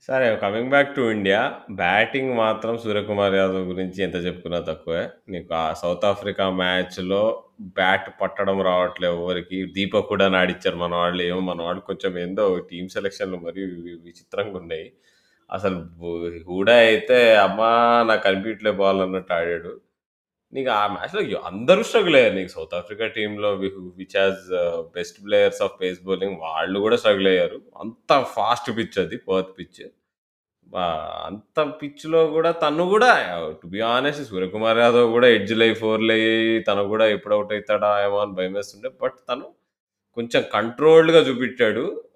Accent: native